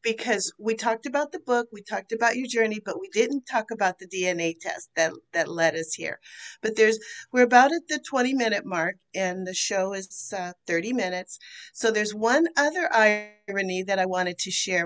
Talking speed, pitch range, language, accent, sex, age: 200 wpm, 180-235 Hz, English, American, female, 50-69